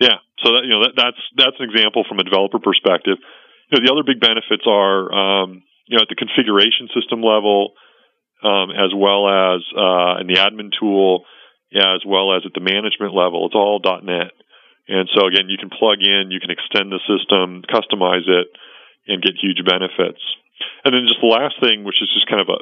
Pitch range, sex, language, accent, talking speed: 90-105 Hz, male, English, American, 210 wpm